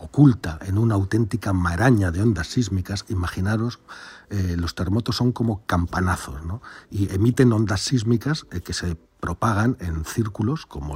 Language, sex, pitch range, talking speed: Spanish, male, 90-120 Hz, 150 wpm